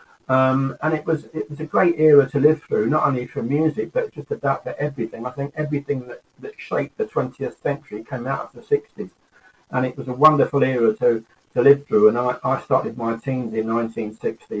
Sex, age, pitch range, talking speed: male, 50-69, 115-145 Hz, 215 wpm